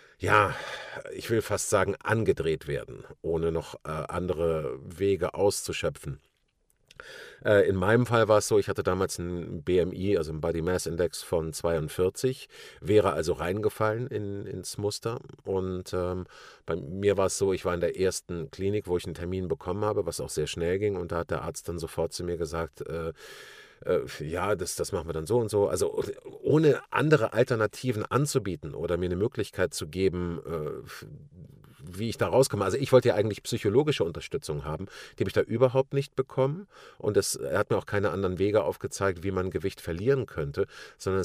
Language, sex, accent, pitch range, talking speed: German, male, German, 90-125 Hz, 185 wpm